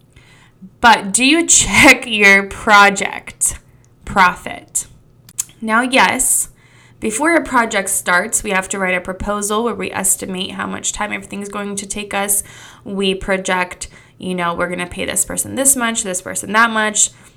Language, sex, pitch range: English, female, 180-215 Hz